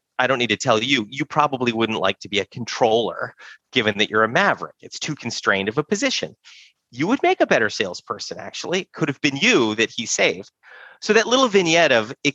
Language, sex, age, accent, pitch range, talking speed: English, male, 30-49, American, 110-160 Hz, 225 wpm